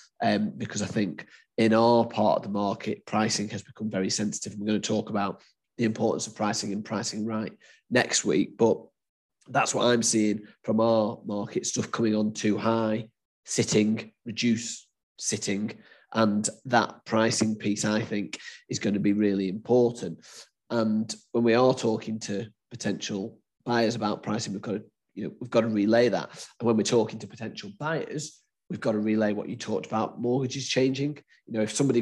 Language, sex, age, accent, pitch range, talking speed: English, male, 30-49, British, 105-115 Hz, 175 wpm